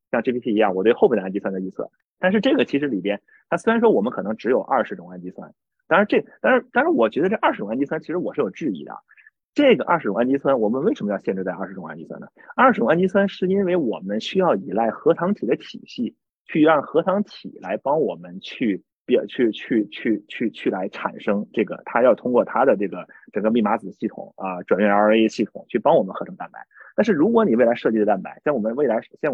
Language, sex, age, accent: Chinese, male, 30-49, native